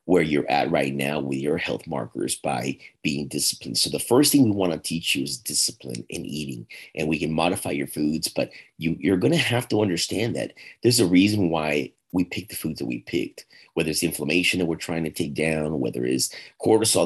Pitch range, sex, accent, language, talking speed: 75-95 Hz, male, American, English, 220 wpm